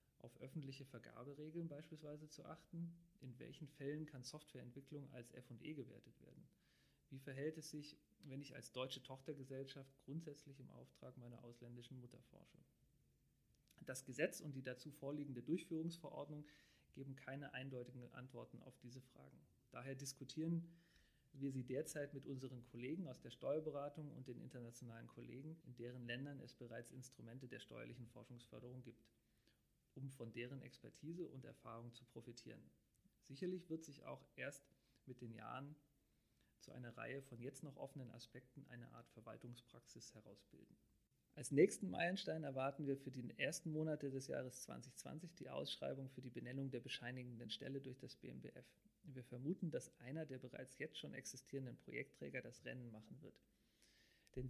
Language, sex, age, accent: German, male, 40-59, German